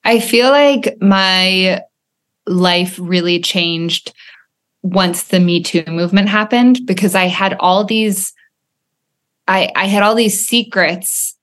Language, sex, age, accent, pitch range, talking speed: English, female, 20-39, American, 170-200 Hz, 125 wpm